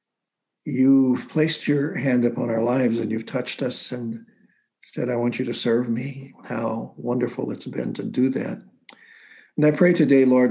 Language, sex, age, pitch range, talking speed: English, male, 60-79, 115-140 Hz, 175 wpm